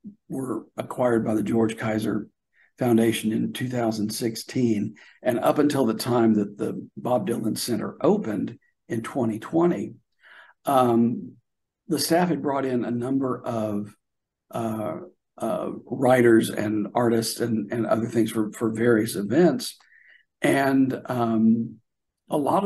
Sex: male